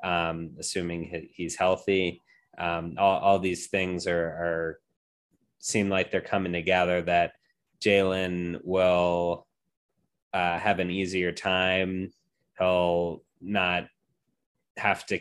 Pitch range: 85-95 Hz